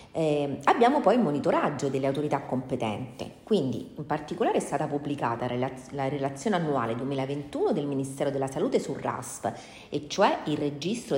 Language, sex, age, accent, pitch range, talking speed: Italian, female, 40-59, native, 130-180 Hz, 150 wpm